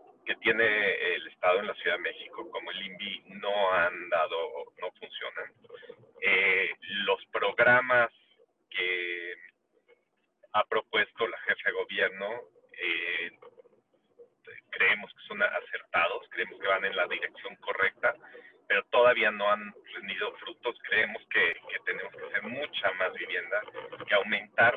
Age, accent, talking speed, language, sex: 40-59, Mexican, 135 wpm, Spanish, male